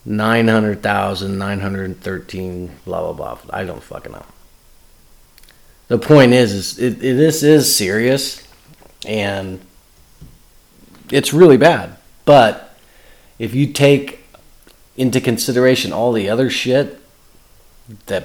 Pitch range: 105-150 Hz